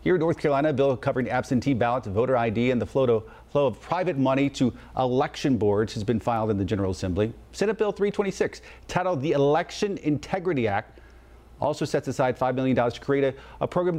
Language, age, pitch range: English, 40-59, 115-150 Hz